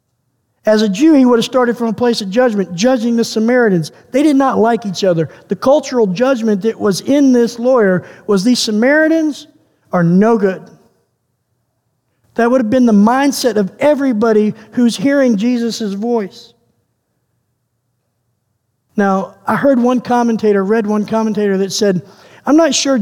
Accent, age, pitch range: American, 50-69, 195-250 Hz